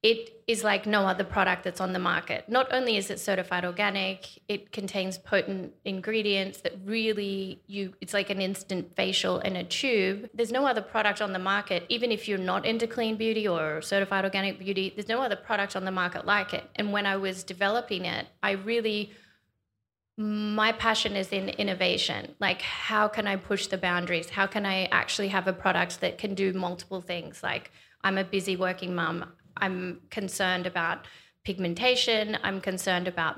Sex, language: female, English